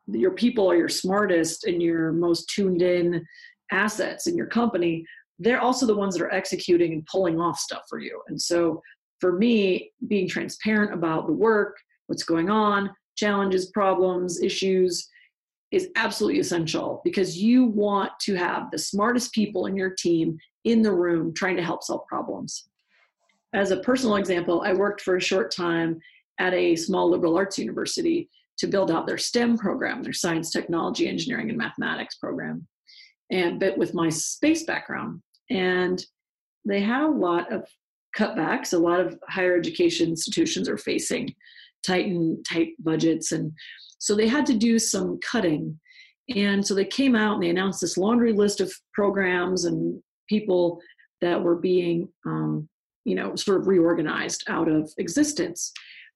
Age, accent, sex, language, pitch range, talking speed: 30-49, American, female, English, 170-215 Hz, 165 wpm